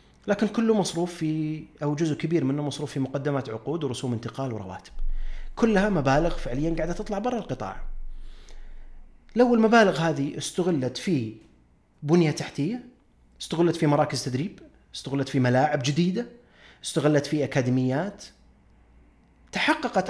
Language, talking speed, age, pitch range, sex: Arabic, 120 wpm, 30-49, 140-205 Hz, male